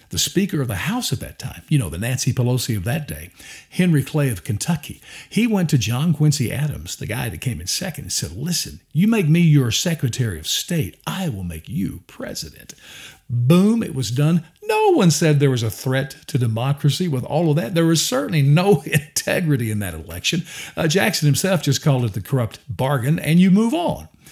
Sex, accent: male, American